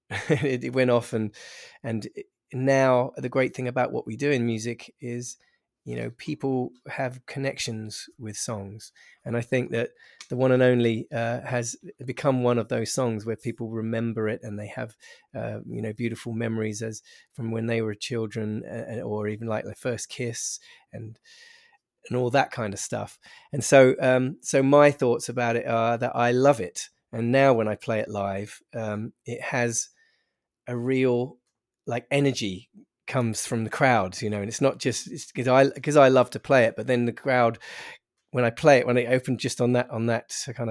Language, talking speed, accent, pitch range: English, 195 wpm, British, 115-130 Hz